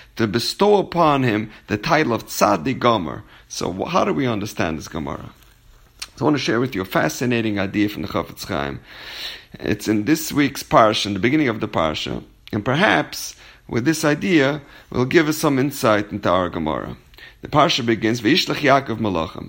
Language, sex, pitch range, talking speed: English, male, 110-170 Hz, 185 wpm